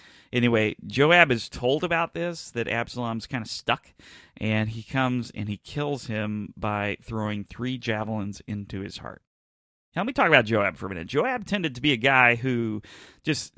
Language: English